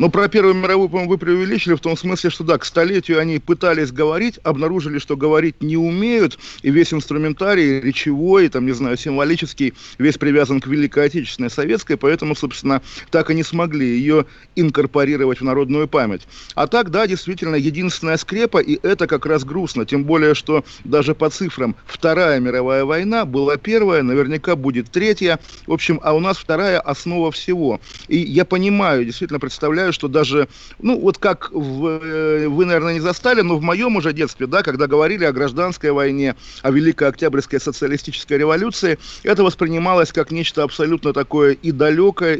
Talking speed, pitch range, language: 165 wpm, 140-170 Hz, Russian